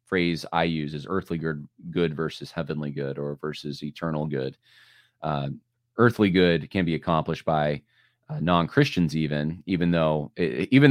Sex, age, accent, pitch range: male, 30-49, American, 80-110 Hz